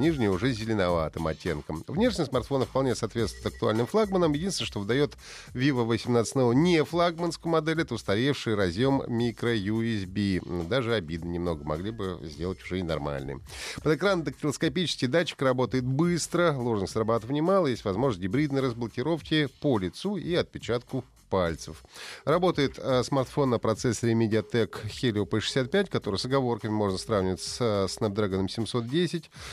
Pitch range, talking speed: 100-140 Hz, 130 wpm